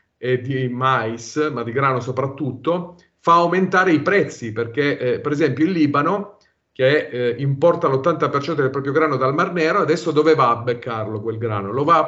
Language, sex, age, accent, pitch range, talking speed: Italian, male, 40-59, native, 130-170 Hz, 180 wpm